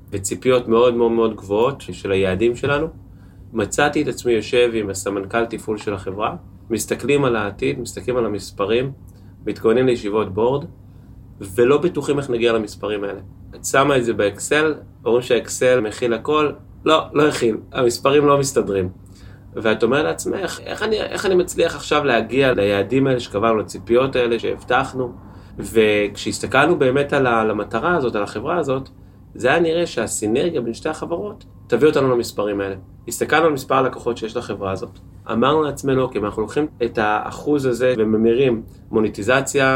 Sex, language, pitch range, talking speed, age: male, Hebrew, 100-130 Hz, 150 wpm, 30-49